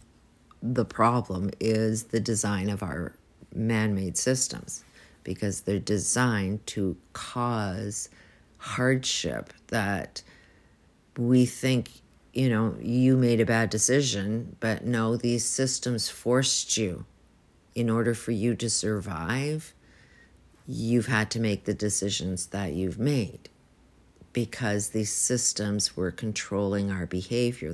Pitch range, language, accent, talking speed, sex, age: 100-120 Hz, English, American, 115 wpm, female, 50-69